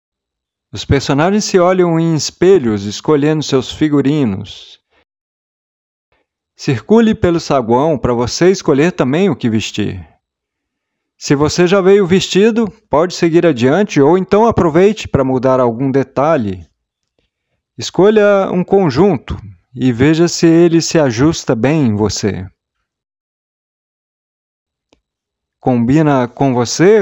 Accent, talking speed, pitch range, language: Brazilian, 110 wpm, 120-175 Hz, Portuguese